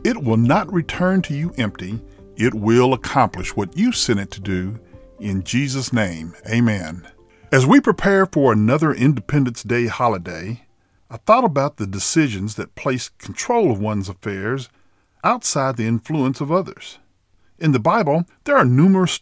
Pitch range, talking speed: 105-160 Hz, 155 wpm